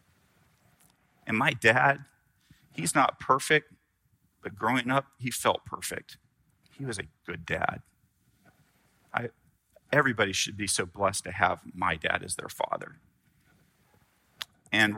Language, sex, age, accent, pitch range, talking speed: English, male, 40-59, American, 100-130 Hz, 125 wpm